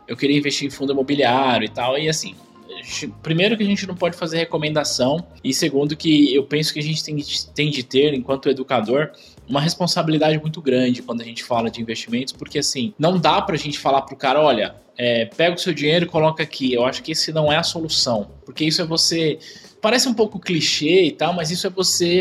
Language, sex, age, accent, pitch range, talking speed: Portuguese, male, 20-39, Brazilian, 130-170 Hz, 215 wpm